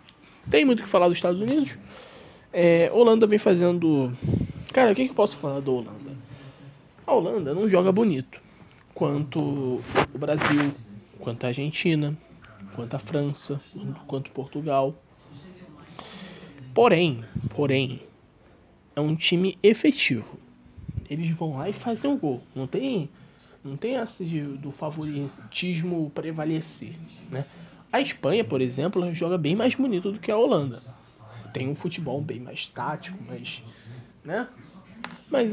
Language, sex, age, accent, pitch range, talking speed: Portuguese, male, 20-39, Brazilian, 140-200 Hz, 130 wpm